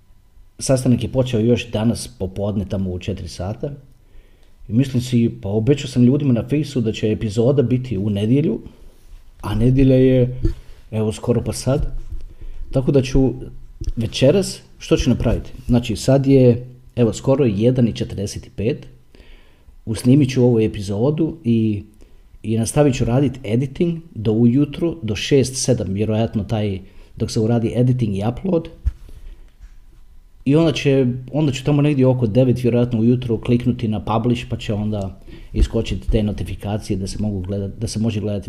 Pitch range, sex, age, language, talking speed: 105-130 Hz, male, 40-59, Croatian, 145 wpm